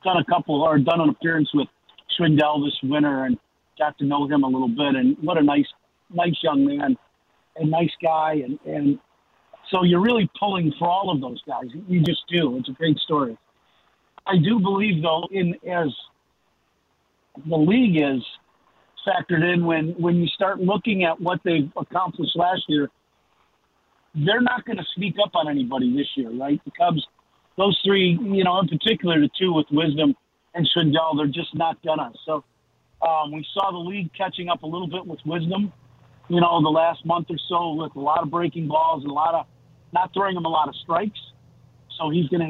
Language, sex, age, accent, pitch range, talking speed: English, male, 50-69, American, 150-185 Hz, 195 wpm